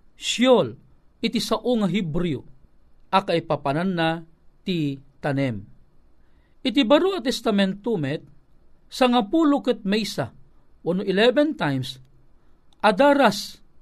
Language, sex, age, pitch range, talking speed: Filipino, male, 50-69, 170-235 Hz, 95 wpm